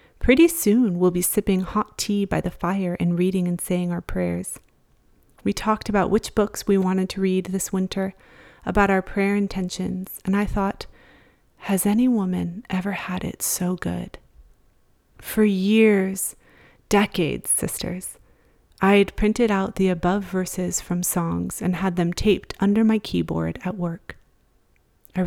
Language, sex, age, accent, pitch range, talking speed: English, female, 30-49, American, 180-200 Hz, 155 wpm